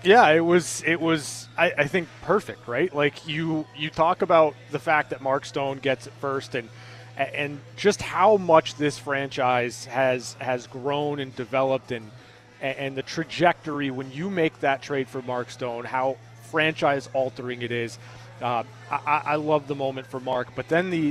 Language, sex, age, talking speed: English, male, 30-49, 180 wpm